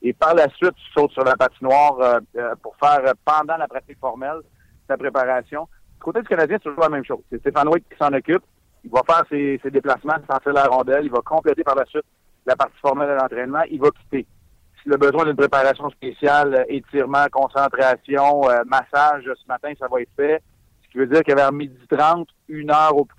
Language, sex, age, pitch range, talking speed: French, male, 60-79, 130-150 Hz, 225 wpm